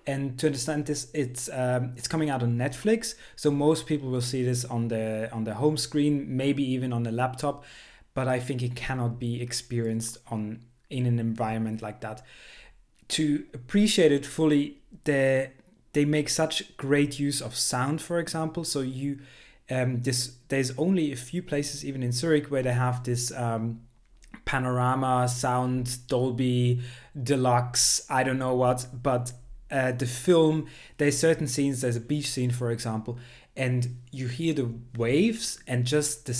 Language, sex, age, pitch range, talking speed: English, male, 20-39, 125-150 Hz, 165 wpm